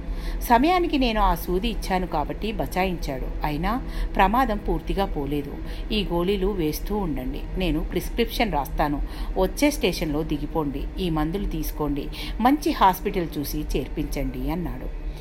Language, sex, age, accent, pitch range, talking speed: Telugu, female, 50-69, native, 150-200 Hz, 115 wpm